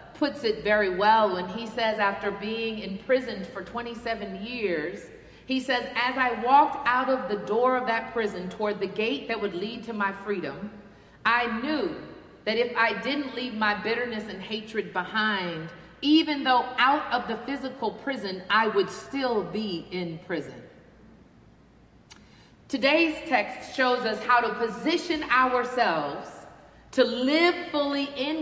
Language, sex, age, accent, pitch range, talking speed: English, female, 40-59, American, 215-275 Hz, 150 wpm